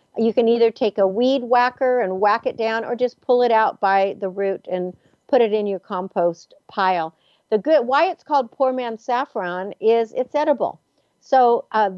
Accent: American